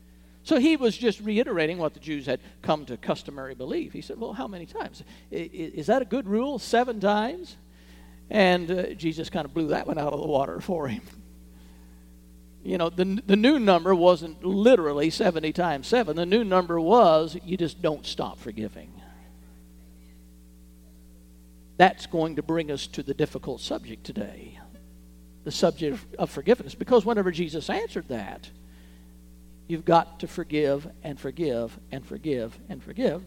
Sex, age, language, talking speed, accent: male, 50-69, English, 160 wpm, American